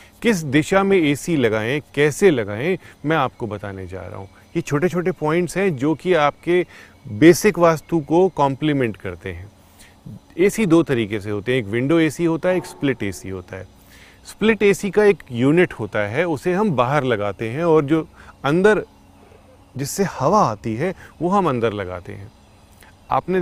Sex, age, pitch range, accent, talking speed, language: male, 30-49, 105-170 Hz, native, 175 wpm, Hindi